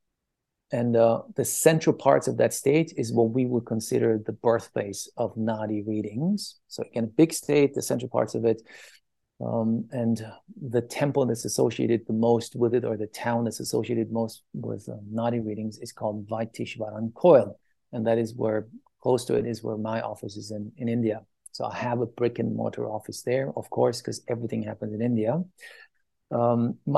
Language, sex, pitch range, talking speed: English, male, 110-125 Hz, 185 wpm